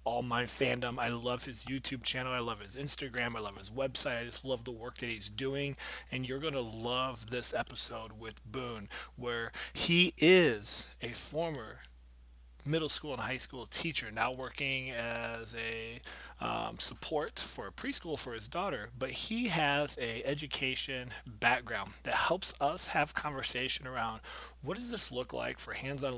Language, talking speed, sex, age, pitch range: English, 170 wpm, male, 30-49, 120-140 Hz